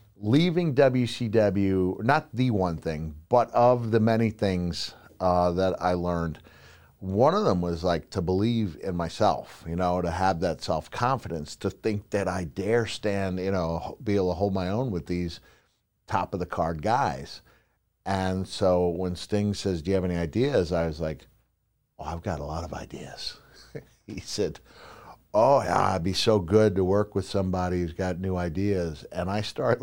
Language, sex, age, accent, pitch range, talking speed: English, male, 50-69, American, 90-115 Hz, 180 wpm